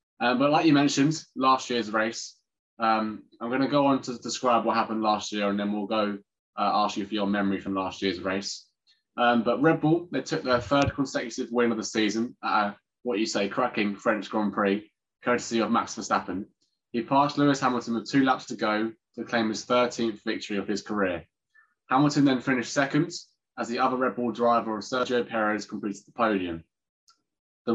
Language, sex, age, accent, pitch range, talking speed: English, male, 20-39, British, 105-130 Hz, 200 wpm